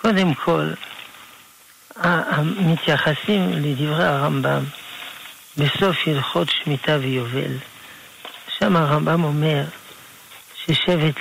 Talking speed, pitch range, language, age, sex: 70 wpm, 140-180 Hz, Hebrew, 60-79, male